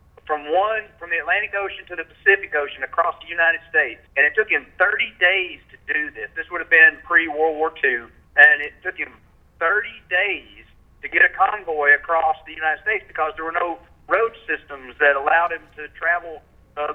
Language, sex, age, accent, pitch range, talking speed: English, male, 40-59, American, 155-220 Hz, 200 wpm